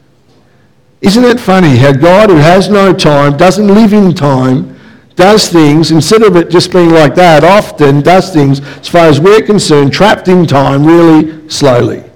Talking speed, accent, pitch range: 175 wpm, Australian, 170-225 Hz